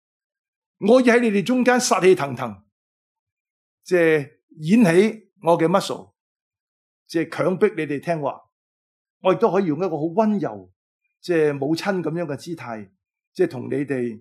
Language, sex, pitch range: Chinese, male, 140-220 Hz